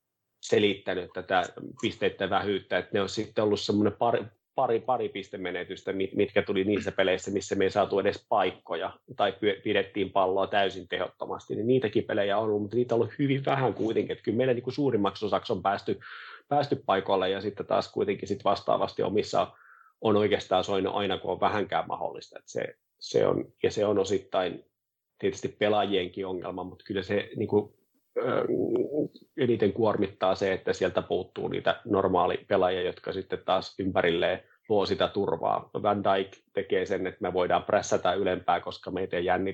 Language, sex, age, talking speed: Finnish, male, 30-49, 150 wpm